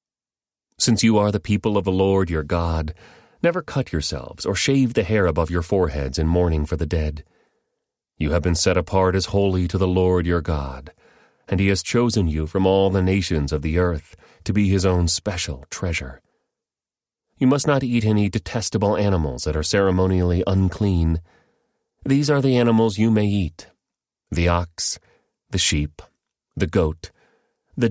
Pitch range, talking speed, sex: 80-105 Hz, 170 wpm, male